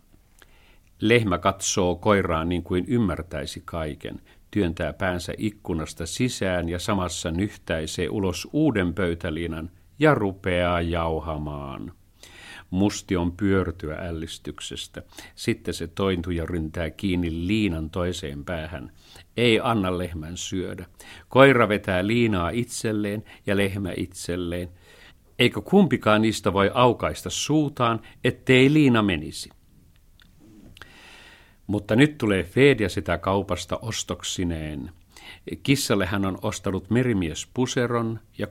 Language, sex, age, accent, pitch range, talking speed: Finnish, male, 50-69, native, 90-120 Hz, 105 wpm